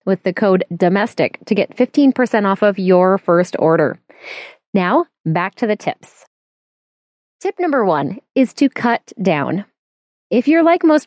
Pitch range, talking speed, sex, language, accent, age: 185-260 Hz, 150 wpm, female, English, American, 20-39